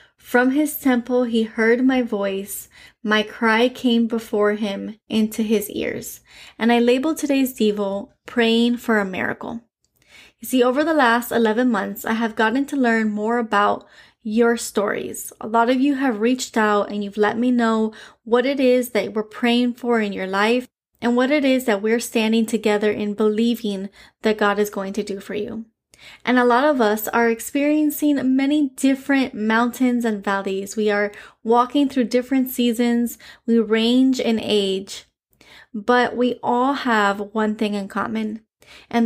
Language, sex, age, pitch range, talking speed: English, female, 20-39, 215-245 Hz, 170 wpm